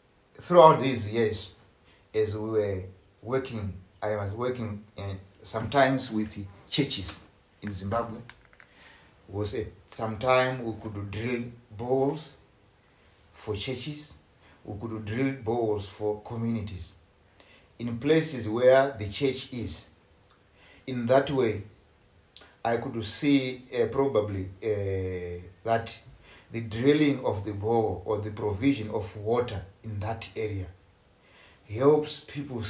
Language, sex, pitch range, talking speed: English, male, 100-125 Hz, 115 wpm